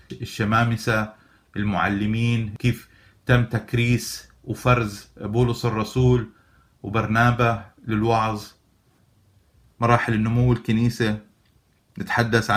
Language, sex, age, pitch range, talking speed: Arabic, male, 30-49, 105-120 Hz, 65 wpm